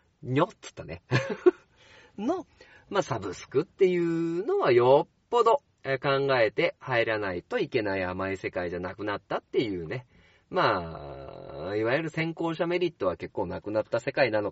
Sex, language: male, Japanese